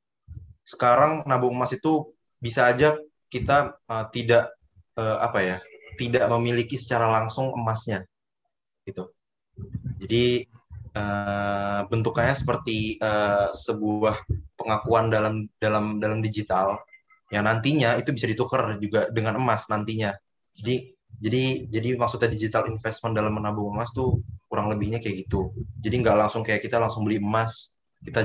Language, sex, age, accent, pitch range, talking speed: Indonesian, male, 20-39, native, 105-125 Hz, 130 wpm